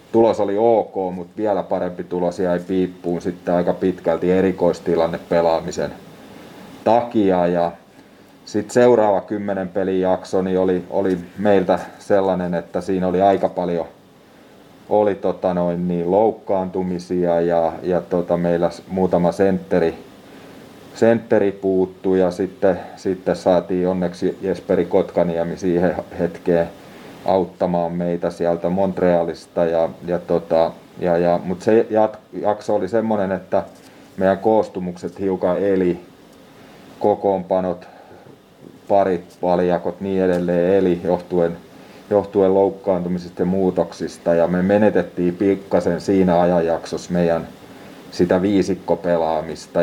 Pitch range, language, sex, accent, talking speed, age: 85-95 Hz, Finnish, male, native, 110 wpm, 30-49